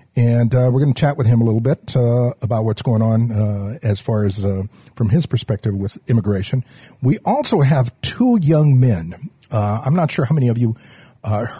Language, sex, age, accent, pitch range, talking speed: English, male, 50-69, American, 110-135 Hz, 210 wpm